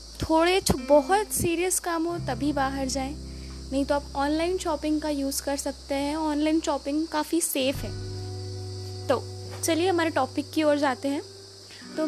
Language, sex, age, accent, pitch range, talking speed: Hindi, female, 20-39, native, 245-330 Hz, 160 wpm